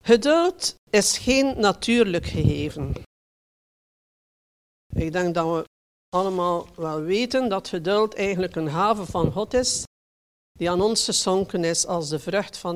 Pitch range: 170-235 Hz